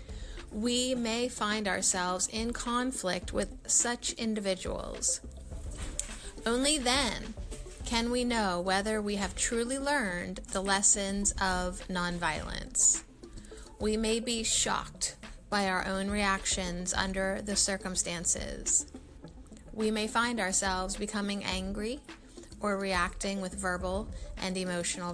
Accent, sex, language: American, female, English